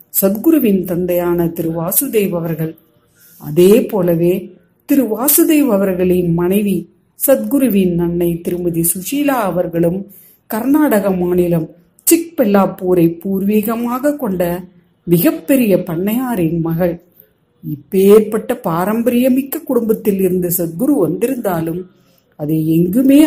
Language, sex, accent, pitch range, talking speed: Tamil, female, native, 170-225 Hz, 60 wpm